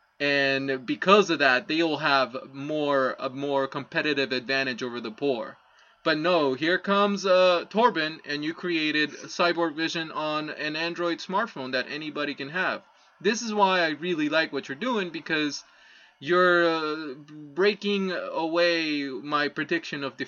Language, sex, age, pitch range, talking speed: English, male, 20-39, 135-170 Hz, 155 wpm